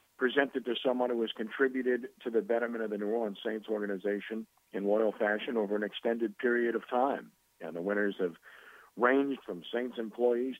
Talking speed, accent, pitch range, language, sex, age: 180 wpm, American, 95-120 Hz, English, male, 50-69